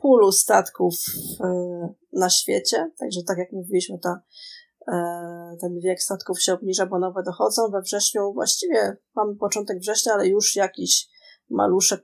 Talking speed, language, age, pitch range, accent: 135 wpm, Polish, 20-39, 180-205 Hz, native